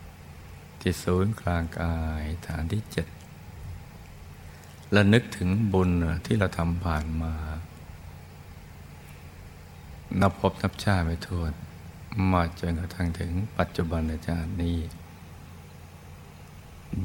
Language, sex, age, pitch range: Thai, male, 60-79, 80-90 Hz